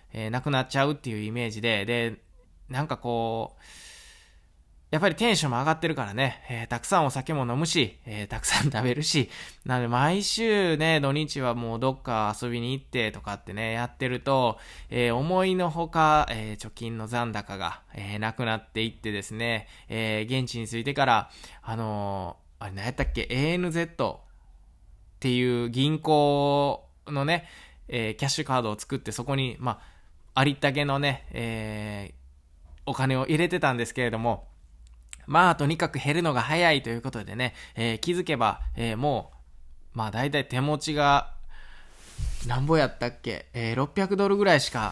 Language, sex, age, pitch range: Japanese, male, 20-39, 110-145 Hz